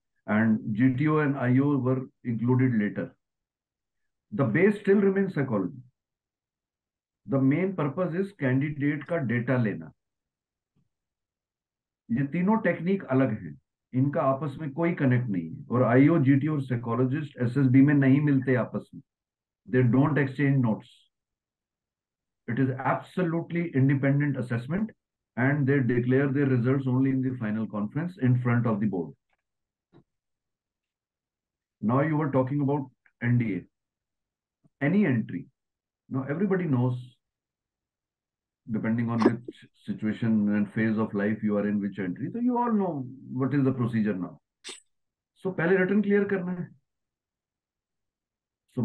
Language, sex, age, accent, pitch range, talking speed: Hindi, male, 50-69, native, 120-150 Hz, 130 wpm